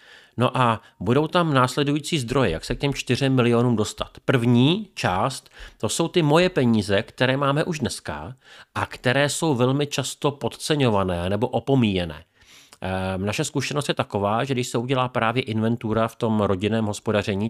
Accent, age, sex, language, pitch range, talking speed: native, 40-59, male, Czech, 105-135 Hz, 160 wpm